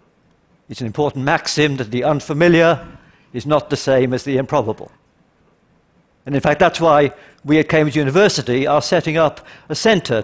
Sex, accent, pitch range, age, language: male, British, 130-165 Hz, 60-79, Chinese